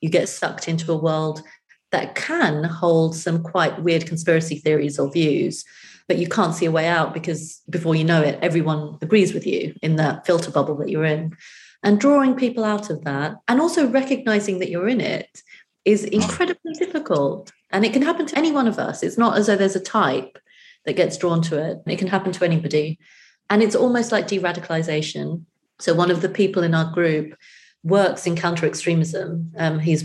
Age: 30-49